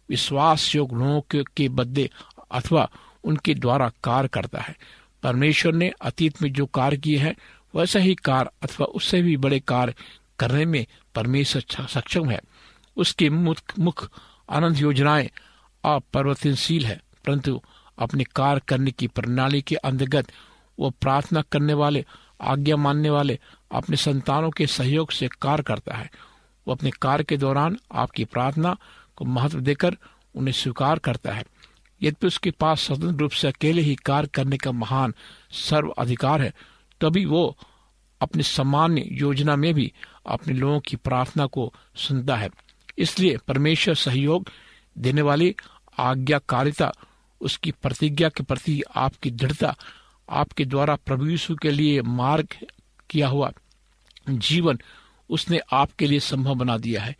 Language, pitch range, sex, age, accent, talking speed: Hindi, 130-155 Hz, male, 50-69, native, 130 wpm